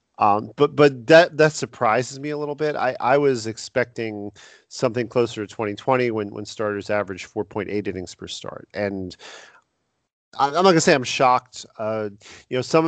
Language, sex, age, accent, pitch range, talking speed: English, male, 40-59, American, 100-125 Hz, 185 wpm